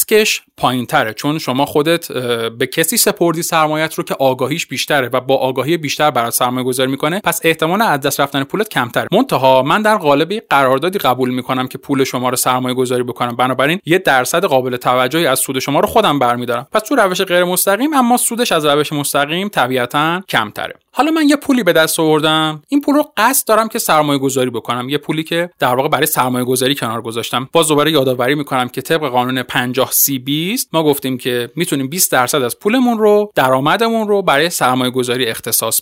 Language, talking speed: Persian, 190 wpm